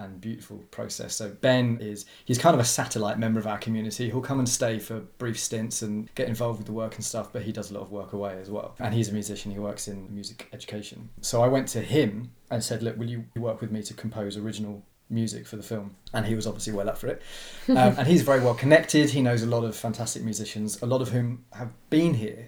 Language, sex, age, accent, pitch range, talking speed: English, male, 20-39, British, 105-125 Hz, 260 wpm